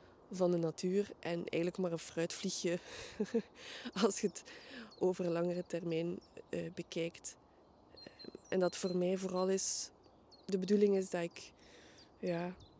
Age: 20-39